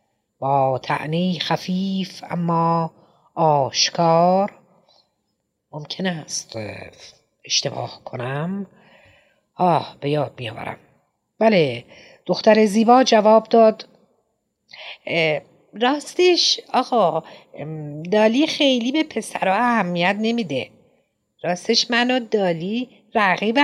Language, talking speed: Persian, 75 wpm